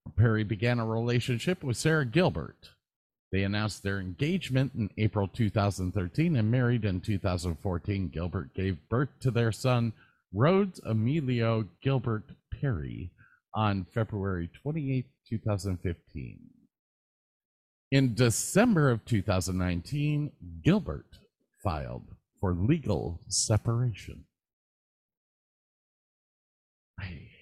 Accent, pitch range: American, 85-125 Hz